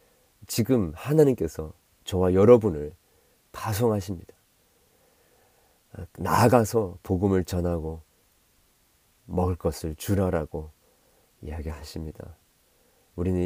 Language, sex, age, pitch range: Korean, male, 40-59, 80-95 Hz